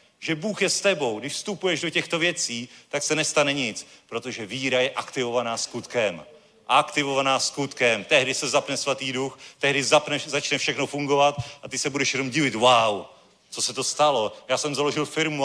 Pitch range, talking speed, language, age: 150-200 Hz, 175 wpm, Czech, 40-59